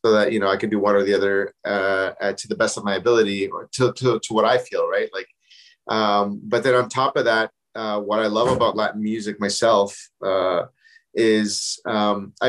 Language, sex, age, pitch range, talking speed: English, male, 30-49, 110-140 Hz, 215 wpm